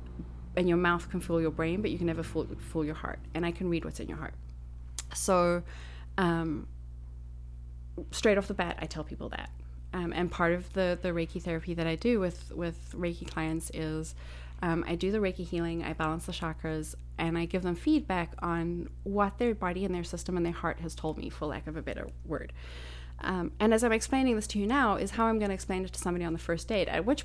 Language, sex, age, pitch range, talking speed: English, female, 30-49, 155-200 Hz, 235 wpm